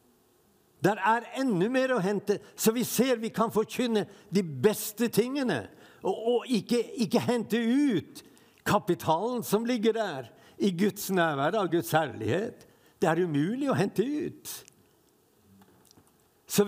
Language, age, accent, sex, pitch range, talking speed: English, 60-79, Swedish, male, 180-230 Hz, 135 wpm